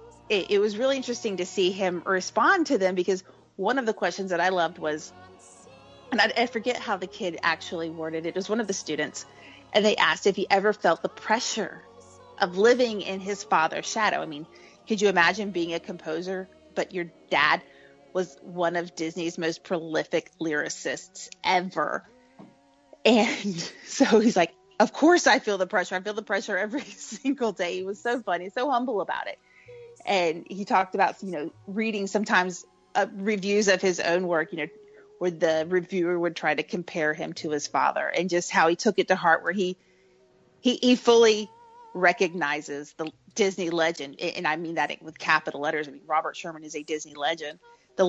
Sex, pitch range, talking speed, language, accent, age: female, 165-215 Hz, 195 wpm, English, American, 30-49